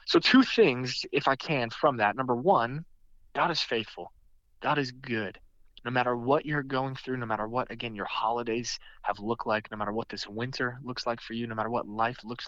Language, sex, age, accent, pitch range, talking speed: English, male, 20-39, American, 105-130 Hz, 215 wpm